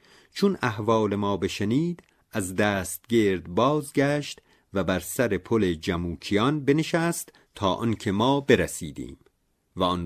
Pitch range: 90-125 Hz